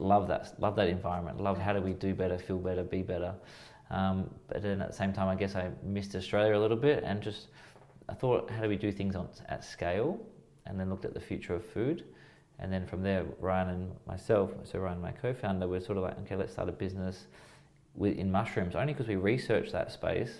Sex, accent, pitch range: male, Australian, 95-100 Hz